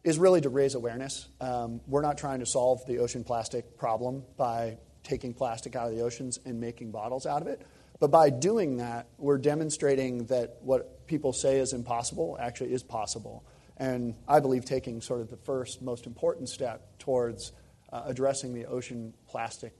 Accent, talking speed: American, 180 wpm